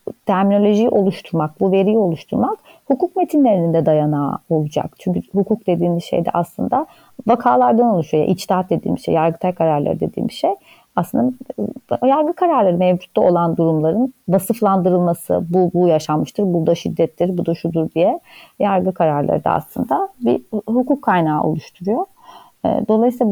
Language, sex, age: Turkish, female, 30-49